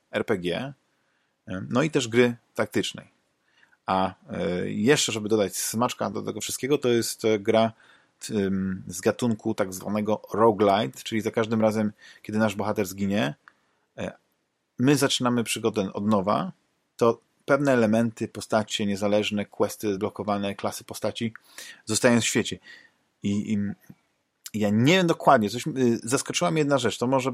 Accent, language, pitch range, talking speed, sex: native, Polish, 105-120 Hz, 130 wpm, male